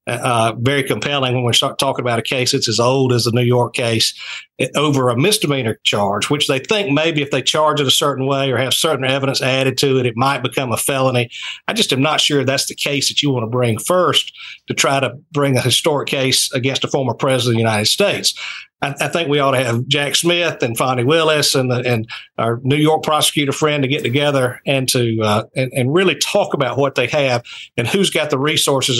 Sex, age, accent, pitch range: male, 50-69, American, 125-150 Hz